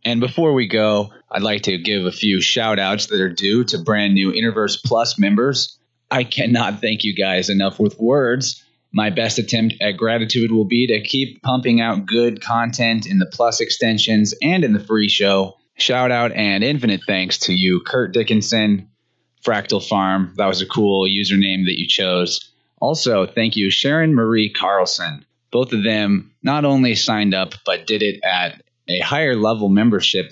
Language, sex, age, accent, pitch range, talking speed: English, male, 20-39, American, 100-120 Hz, 175 wpm